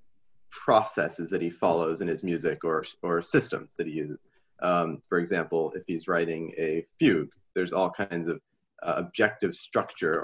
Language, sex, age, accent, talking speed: English, male, 30-49, American, 165 wpm